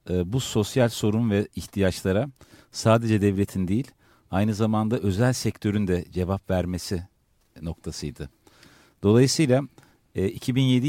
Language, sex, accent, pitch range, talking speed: Turkish, male, native, 95-125 Hz, 100 wpm